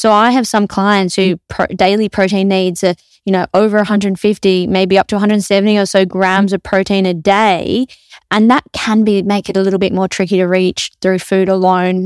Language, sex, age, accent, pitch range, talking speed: English, female, 20-39, Australian, 185-210 Hz, 210 wpm